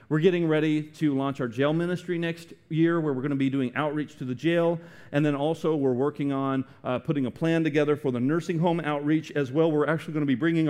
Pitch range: 140-195 Hz